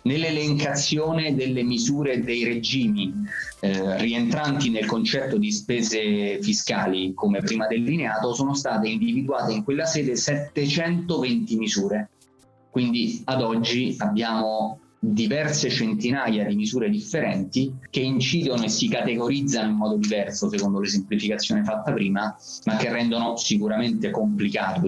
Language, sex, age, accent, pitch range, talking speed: Italian, male, 20-39, native, 110-165 Hz, 120 wpm